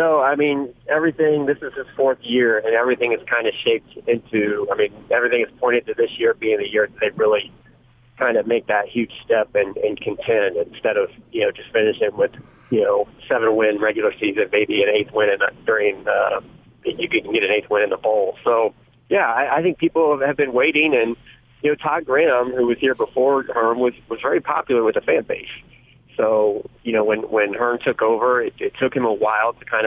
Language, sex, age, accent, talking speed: English, male, 40-59, American, 215 wpm